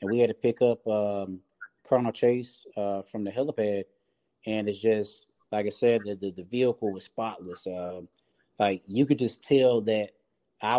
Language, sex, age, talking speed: English, male, 30-49, 190 wpm